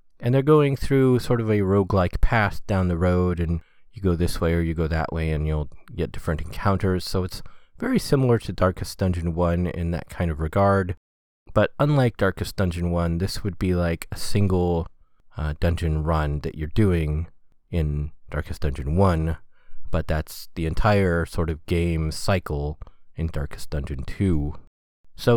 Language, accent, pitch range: English, American, 80-110 Hz